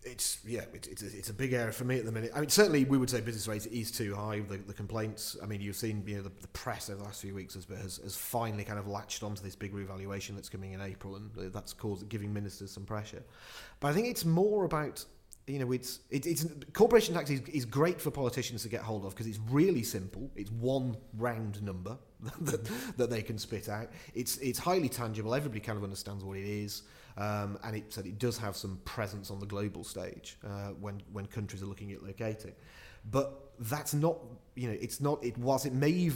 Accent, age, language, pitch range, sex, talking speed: British, 30-49, English, 100-130 Hz, male, 235 wpm